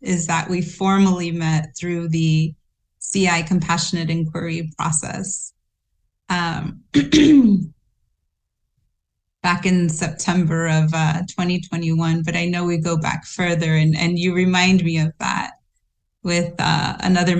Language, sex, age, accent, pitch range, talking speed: English, female, 30-49, American, 165-190 Hz, 120 wpm